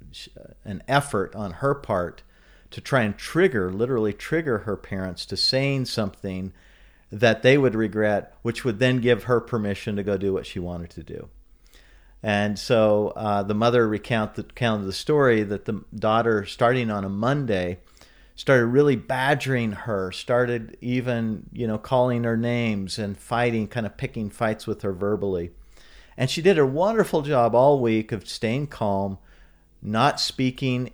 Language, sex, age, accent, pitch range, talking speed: English, male, 50-69, American, 100-125 Hz, 160 wpm